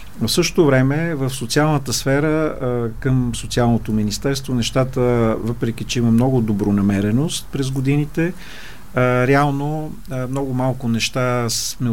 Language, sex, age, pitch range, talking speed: Bulgarian, male, 50-69, 115-140 Hz, 110 wpm